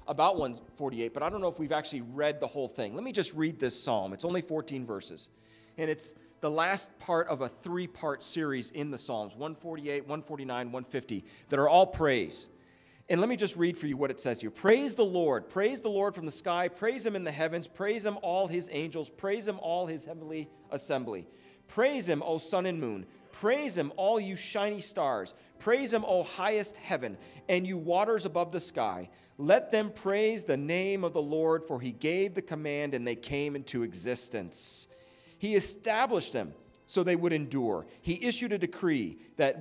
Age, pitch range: 40-59, 145-195 Hz